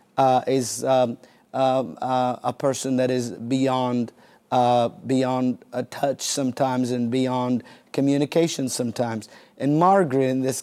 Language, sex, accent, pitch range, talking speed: English, male, American, 125-140 Hz, 130 wpm